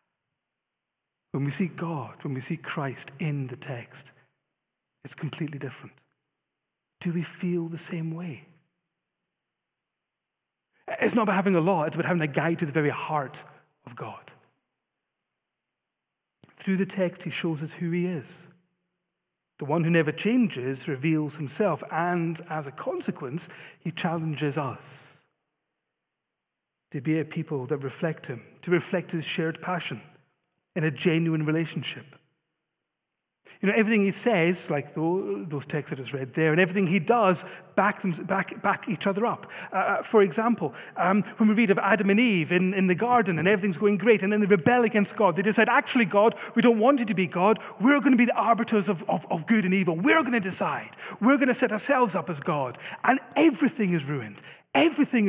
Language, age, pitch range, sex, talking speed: English, 40-59, 155-205 Hz, male, 180 wpm